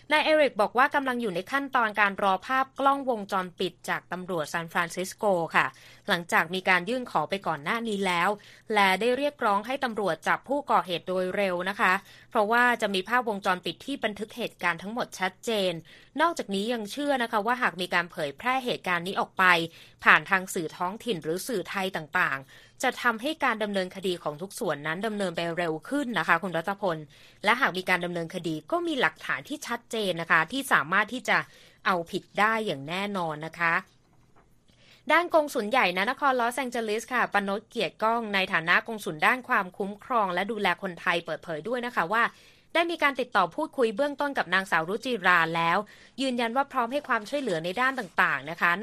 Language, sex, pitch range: Thai, female, 175-240 Hz